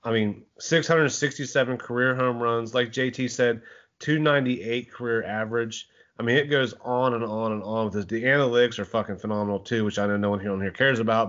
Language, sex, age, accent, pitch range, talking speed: English, male, 30-49, American, 115-135 Hz, 205 wpm